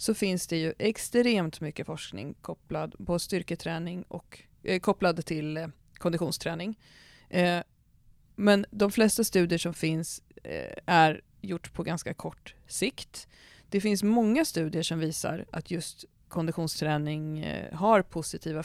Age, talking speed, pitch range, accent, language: 30-49, 120 wpm, 160-190 Hz, native, Swedish